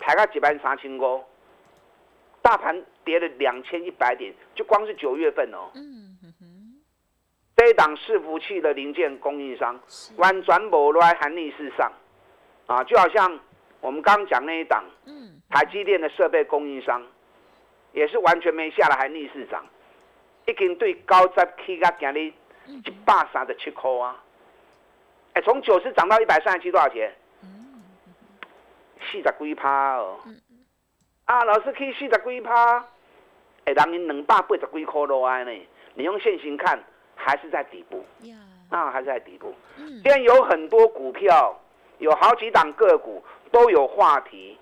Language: Chinese